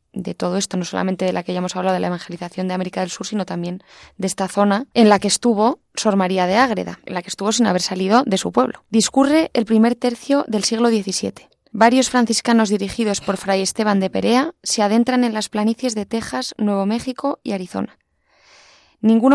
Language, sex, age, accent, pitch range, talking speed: Spanish, female, 20-39, Spanish, 200-245 Hz, 210 wpm